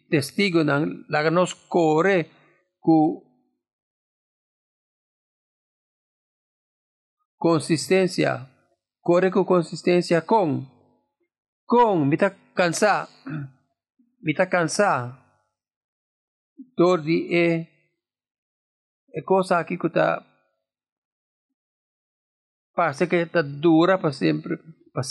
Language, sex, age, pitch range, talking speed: English, male, 50-69, 150-185 Hz, 75 wpm